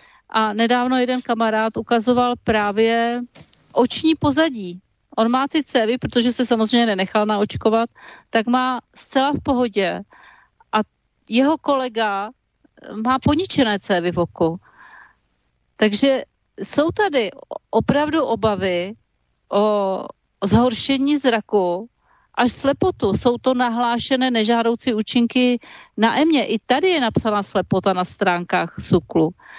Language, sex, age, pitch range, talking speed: Czech, female, 40-59, 210-260 Hz, 110 wpm